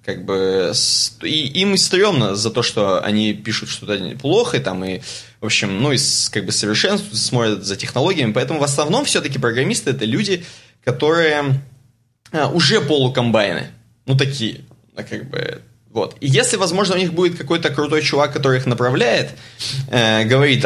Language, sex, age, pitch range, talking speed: Russian, male, 20-39, 115-155 Hz, 155 wpm